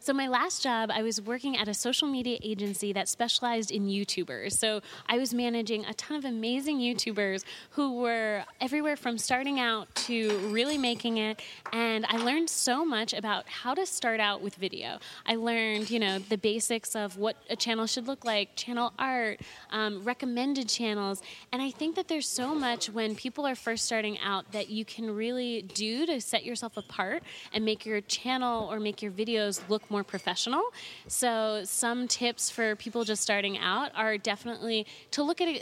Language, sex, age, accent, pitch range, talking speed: English, female, 20-39, American, 215-255 Hz, 185 wpm